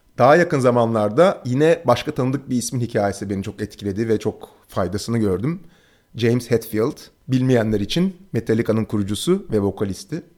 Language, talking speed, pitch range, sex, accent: Turkish, 140 wpm, 120-155 Hz, male, native